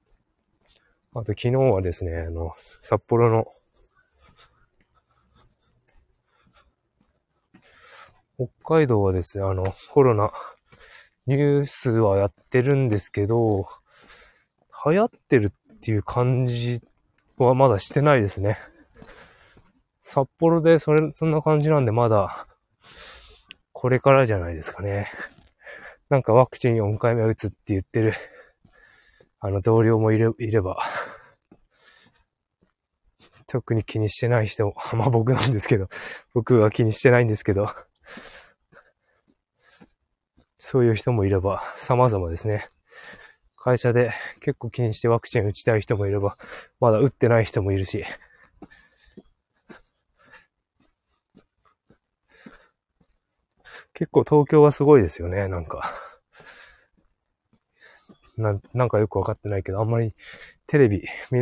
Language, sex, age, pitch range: Japanese, male, 20-39, 100-125 Hz